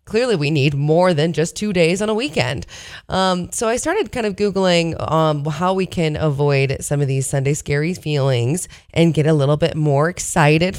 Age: 20-39